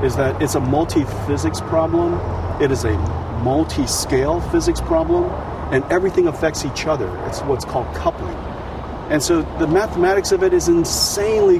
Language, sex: English, male